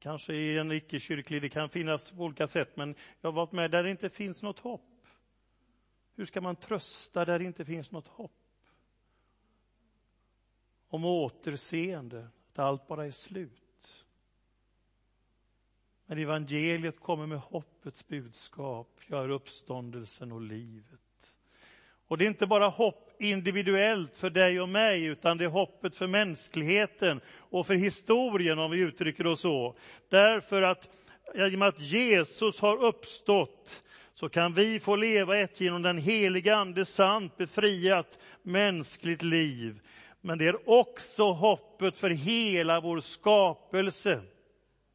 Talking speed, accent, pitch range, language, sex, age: 135 wpm, native, 140-200 Hz, Swedish, male, 40-59